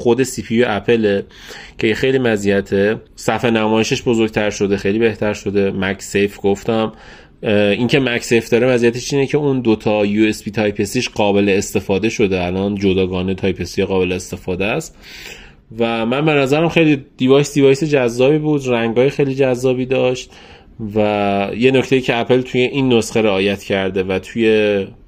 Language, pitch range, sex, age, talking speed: Persian, 100-130 Hz, male, 30-49, 150 wpm